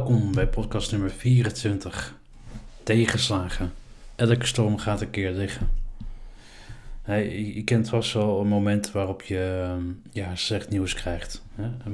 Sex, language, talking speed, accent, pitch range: male, Dutch, 120 wpm, Dutch, 95-110 Hz